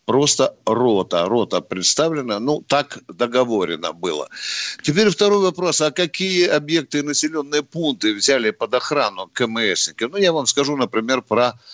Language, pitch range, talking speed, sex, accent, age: Russian, 125-160 Hz, 135 wpm, male, native, 60-79